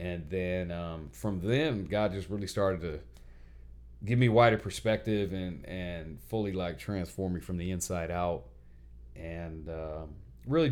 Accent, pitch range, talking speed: American, 70-95 Hz, 150 wpm